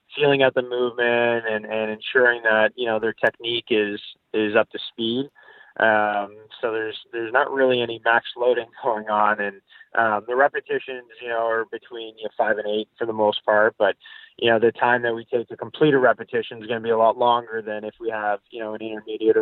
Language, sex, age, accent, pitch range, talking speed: English, male, 20-39, American, 110-125 Hz, 215 wpm